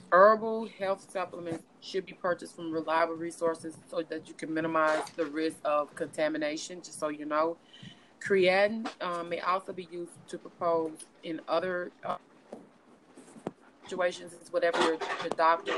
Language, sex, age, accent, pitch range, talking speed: English, female, 20-39, American, 160-180 Hz, 140 wpm